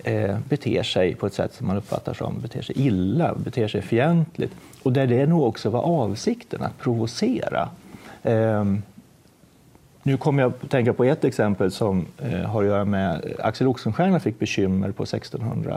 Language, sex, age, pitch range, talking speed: Swedish, male, 40-59, 105-145 Hz, 175 wpm